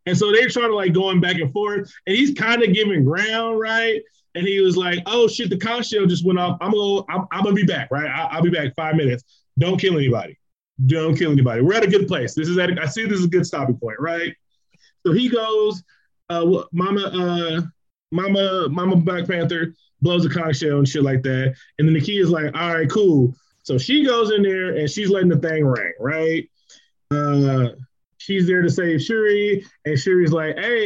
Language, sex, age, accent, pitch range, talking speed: English, male, 20-39, American, 155-195 Hz, 225 wpm